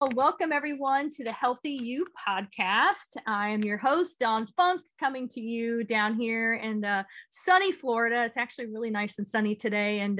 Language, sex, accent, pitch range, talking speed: English, female, American, 215-275 Hz, 175 wpm